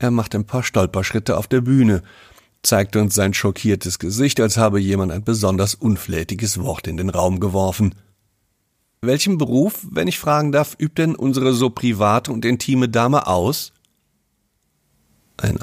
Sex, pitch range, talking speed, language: male, 95-125 Hz, 155 wpm, German